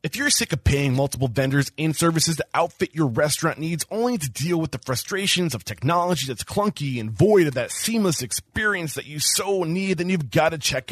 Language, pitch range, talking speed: English, 130-185 Hz, 215 wpm